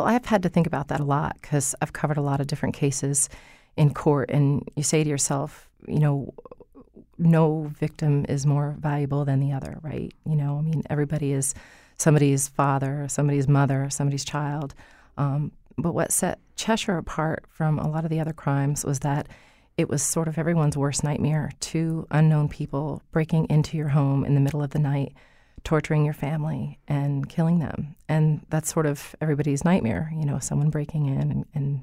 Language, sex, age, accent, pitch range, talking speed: English, female, 30-49, American, 140-155 Hz, 190 wpm